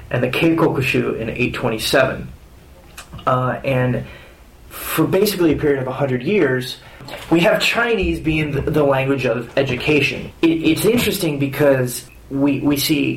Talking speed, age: 135 wpm, 30-49